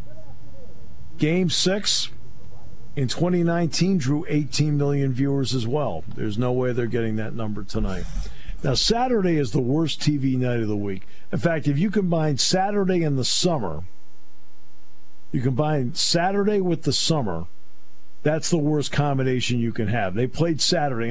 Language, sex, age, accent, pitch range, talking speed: English, male, 50-69, American, 100-150 Hz, 150 wpm